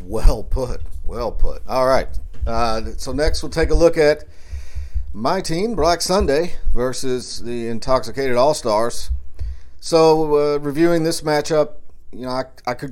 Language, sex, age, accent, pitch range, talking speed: English, male, 40-59, American, 90-140 Hz, 155 wpm